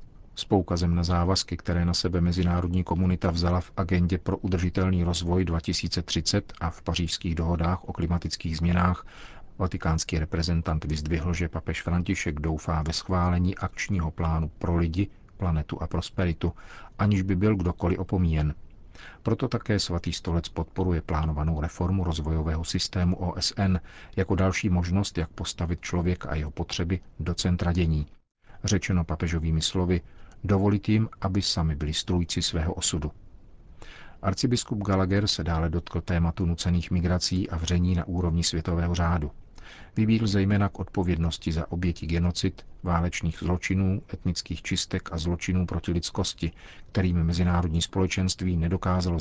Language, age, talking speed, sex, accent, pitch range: Czech, 40-59, 130 wpm, male, native, 85-95 Hz